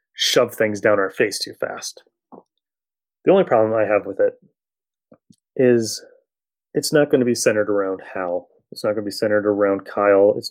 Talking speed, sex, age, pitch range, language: 185 wpm, male, 30-49, 115-150 Hz, English